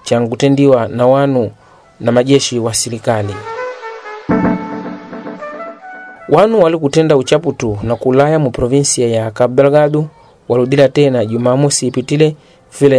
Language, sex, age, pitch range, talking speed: Portuguese, male, 30-49, 120-140 Hz, 90 wpm